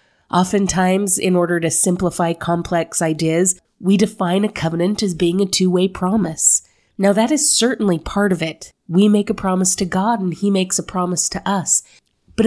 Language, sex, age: English, female, 30-49